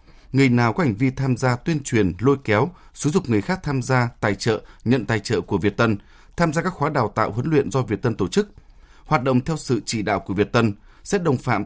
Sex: male